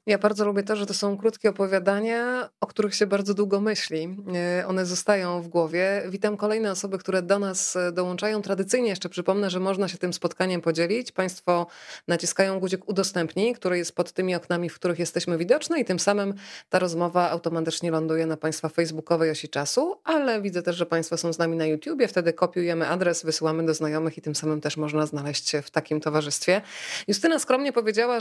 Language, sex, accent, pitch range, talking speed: Polish, female, native, 170-205 Hz, 190 wpm